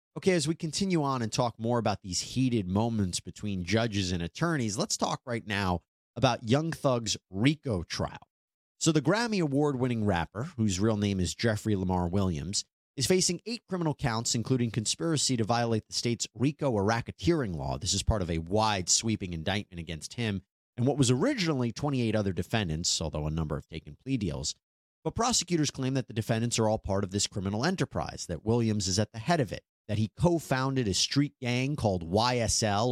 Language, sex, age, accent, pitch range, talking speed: English, male, 30-49, American, 95-135 Hz, 190 wpm